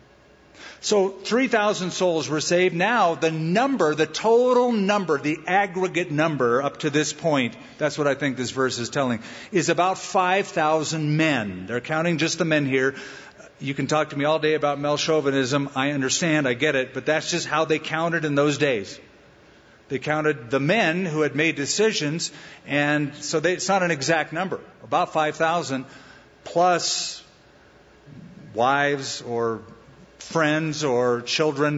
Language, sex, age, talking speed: English, male, 50-69, 160 wpm